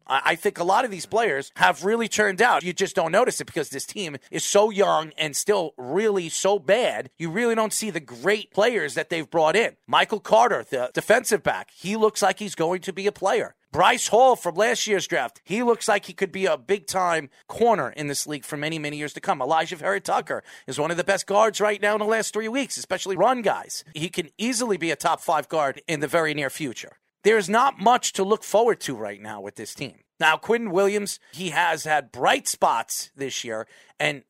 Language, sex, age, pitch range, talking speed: English, male, 40-59, 150-210 Hz, 225 wpm